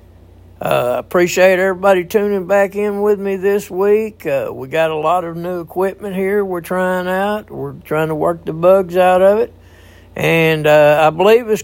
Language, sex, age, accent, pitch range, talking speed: English, male, 60-79, American, 130-195 Hz, 185 wpm